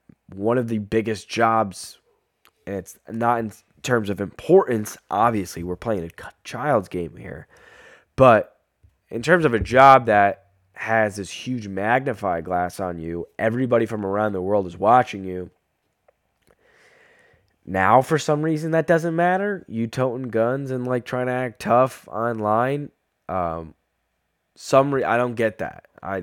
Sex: male